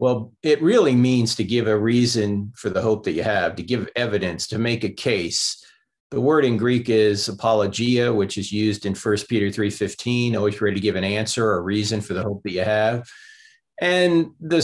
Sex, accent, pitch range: male, American, 100-120 Hz